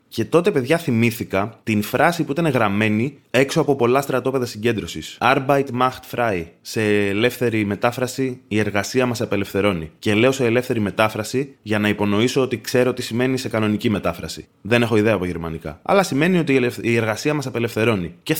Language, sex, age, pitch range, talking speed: Greek, male, 20-39, 105-140 Hz, 170 wpm